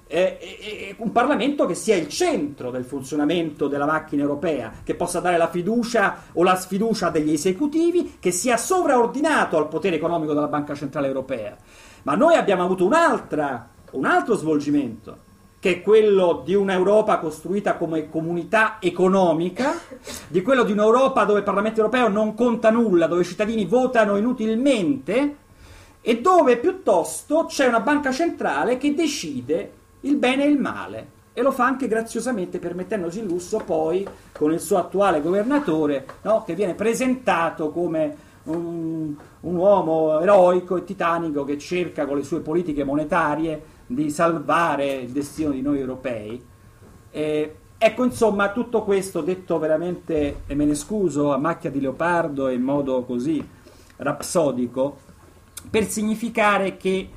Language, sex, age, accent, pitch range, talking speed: Italian, male, 40-59, native, 155-225 Hz, 145 wpm